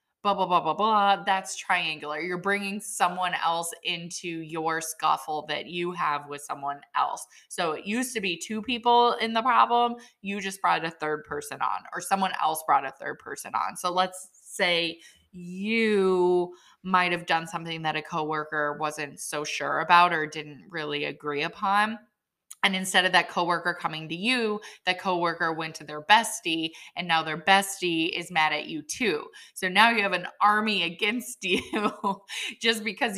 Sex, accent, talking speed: female, American, 175 wpm